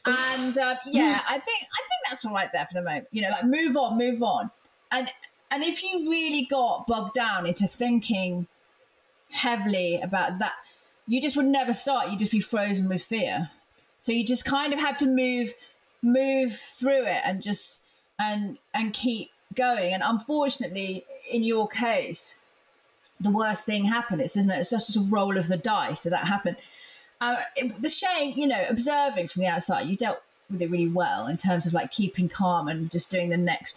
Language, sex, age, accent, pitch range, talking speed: English, female, 30-49, British, 185-255 Hz, 195 wpm